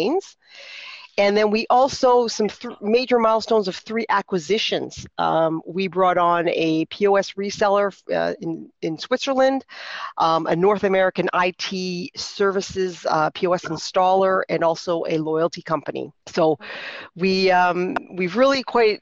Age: 40-59